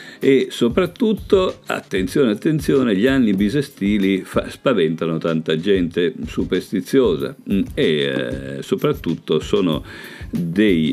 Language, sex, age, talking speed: Italian, male, 50-69, 95 wpm